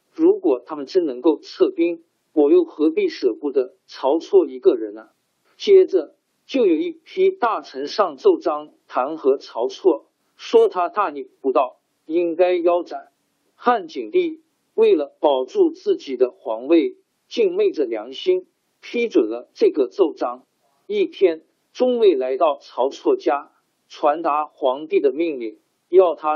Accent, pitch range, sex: native, 320-395 Hz, male